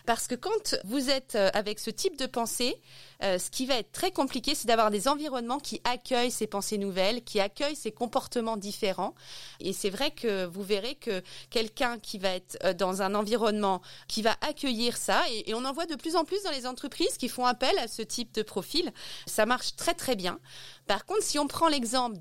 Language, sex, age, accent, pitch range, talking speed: French, female, 30-49, French, 205-265 Hz, 210 wpm